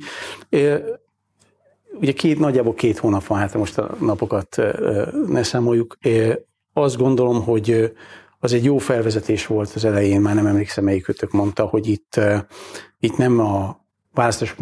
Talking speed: 135 wpm